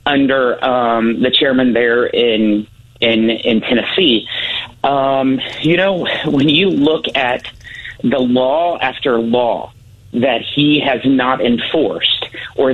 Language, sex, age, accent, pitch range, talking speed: English, male, 40-59, American, 115-145 Hz, 120 wpm